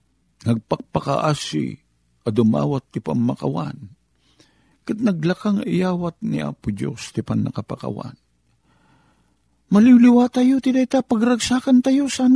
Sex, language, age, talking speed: male, Filipino, 50-69, 95 wpm